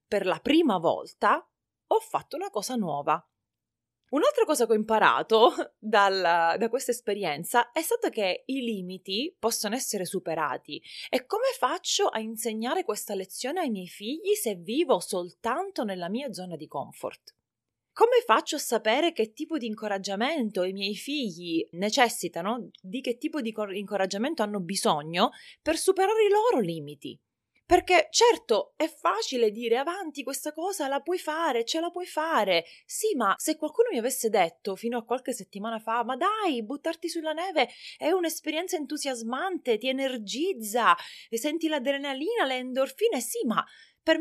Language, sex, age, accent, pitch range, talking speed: Italian, female, 30-49, native, 200-310 Hz, 150 wpm